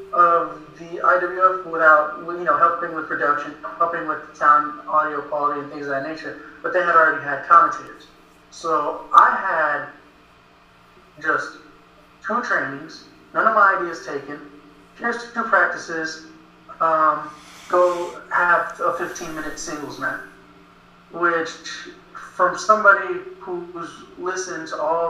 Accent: American